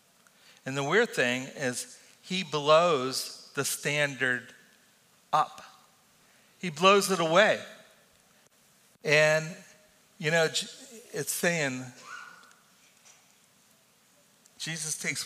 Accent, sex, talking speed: American, male, 85 wpm